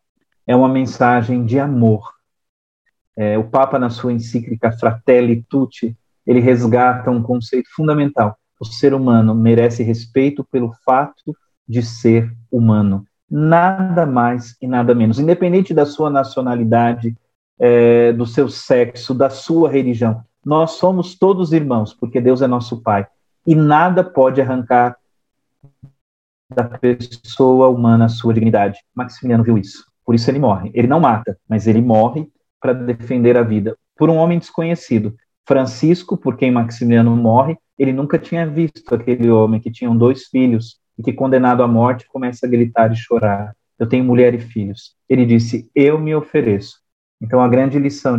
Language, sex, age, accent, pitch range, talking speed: Portuguese, male, 40-59, Brazilian, 115-135 Hz, 150 wpm